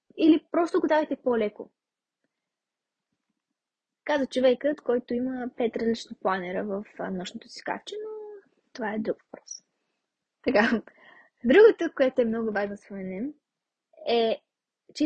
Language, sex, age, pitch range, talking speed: Bulgarian, female, 20-39, 215-285 Hz, 120 wpm